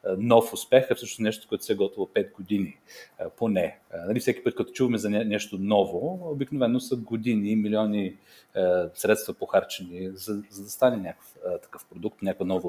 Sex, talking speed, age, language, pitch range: male, 180 wpm, 40-59, Bulgarian, 100-125 Hz